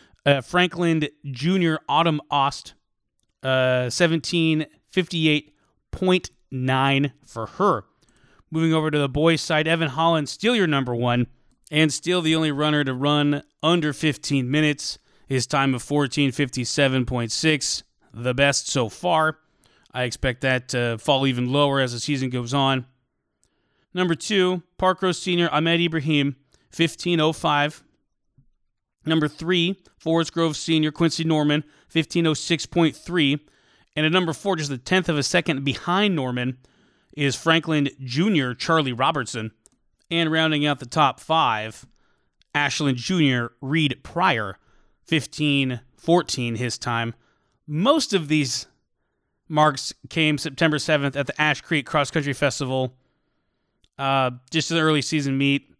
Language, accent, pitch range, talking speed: English, American, 135-160 Hz, 125 wpm